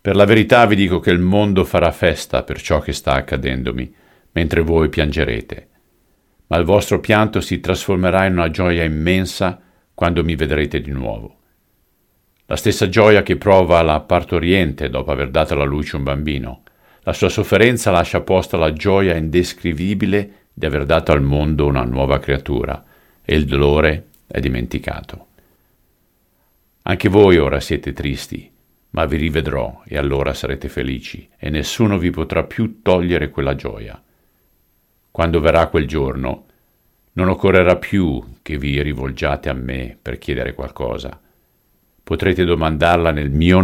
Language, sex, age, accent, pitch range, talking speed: Italian, male, 50-69, native, 70-95 Hz, 145 wpm